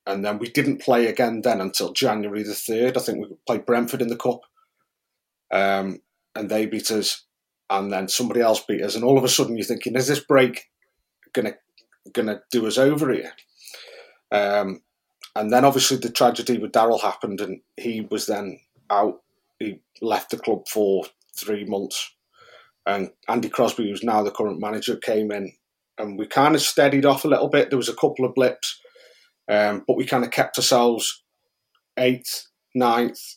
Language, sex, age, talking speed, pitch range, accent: English, male, 30-49, 185 wpm, 105-125 Hz, British